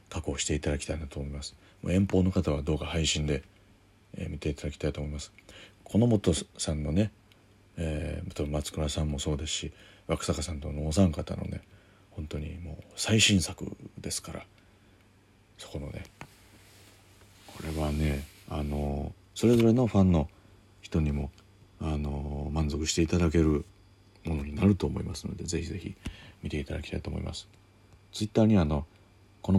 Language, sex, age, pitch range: Japanese, male, 40-59, 75-100 Hz